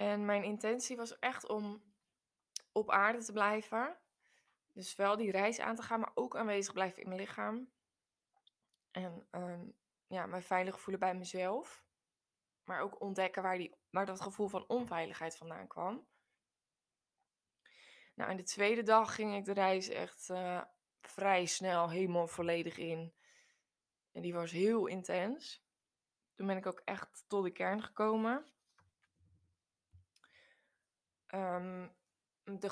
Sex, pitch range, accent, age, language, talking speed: female, 180-220 Hz, Dutch, 20-39, Dutch, 135 wpm